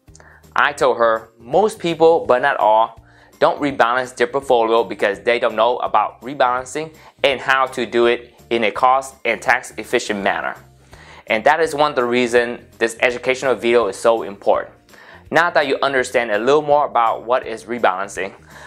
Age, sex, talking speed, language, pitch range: 20-39, male, 175 wpm, English, 115-140 Hz